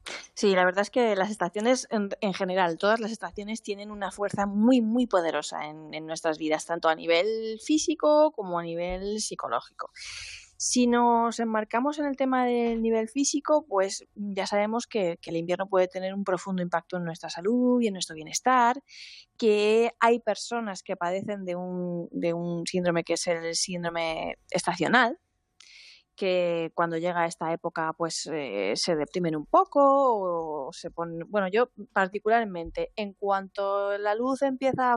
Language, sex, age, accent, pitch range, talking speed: Spanish, female, 20-39, Spanish, 175-230 Hz, 165 wpm